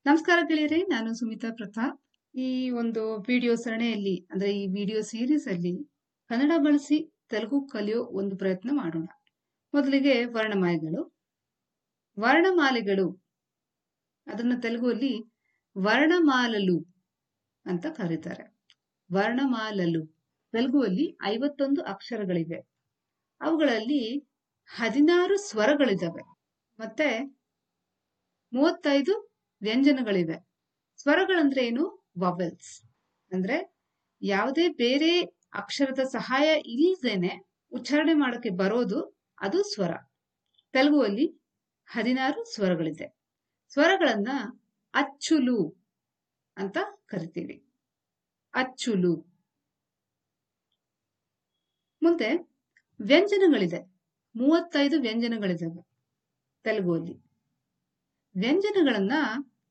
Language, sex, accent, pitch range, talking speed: Kannada, female, native, 195-290 Hz, 65 wpm